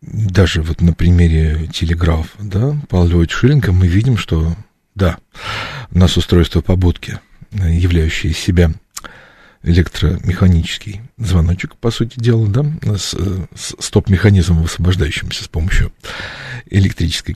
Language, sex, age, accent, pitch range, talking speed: Russian, male, 40-59, native, 90-120 Hz, 100 wpm